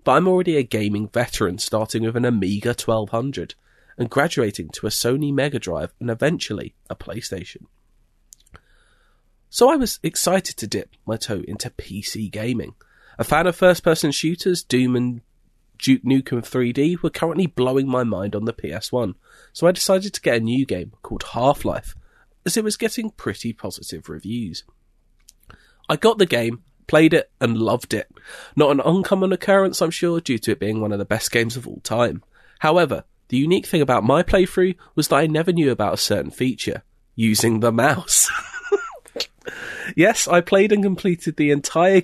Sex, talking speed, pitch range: male, 175 wpm, 115-175 Hz